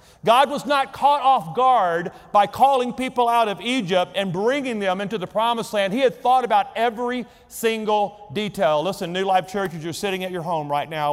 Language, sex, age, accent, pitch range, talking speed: English, male, 40-59, American, 180-245 Hz, 205 wpm